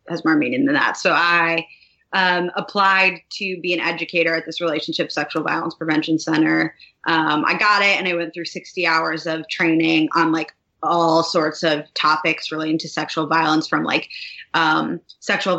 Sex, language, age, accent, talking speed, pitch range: female, English, 20-39, American, 175 wpm, 160-180 Hz